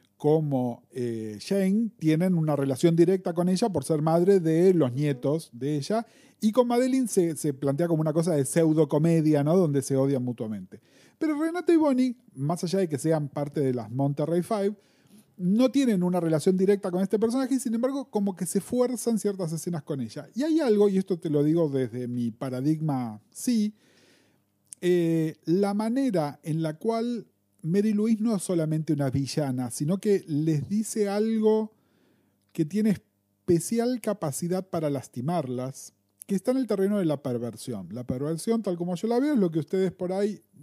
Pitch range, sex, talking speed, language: 145-205 Hz, male, 180 wpm, English